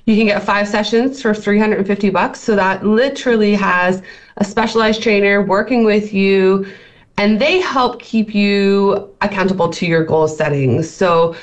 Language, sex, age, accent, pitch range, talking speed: English, female, 20-39, American, 165-210 Hz, 150 wpm